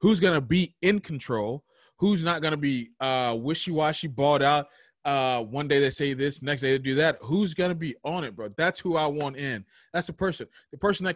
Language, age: English, 20-39